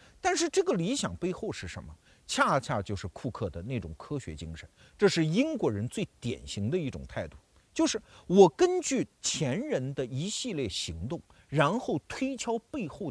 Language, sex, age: Chinese, male, 50-69